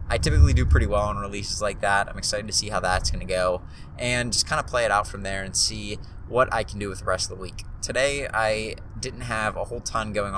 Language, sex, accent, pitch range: English, male, American, 95-115 Hz